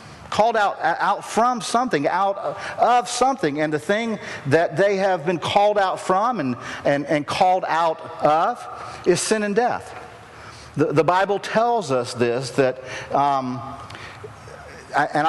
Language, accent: English, American